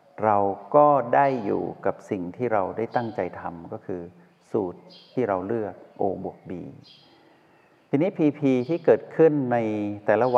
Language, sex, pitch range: Thai, male, 100-125 Hz